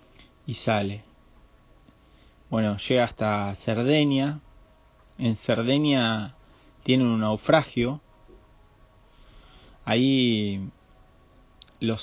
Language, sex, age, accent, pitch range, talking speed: Spanish, male, 30-49, Argentinian, 105-125 Hz, 65 wpm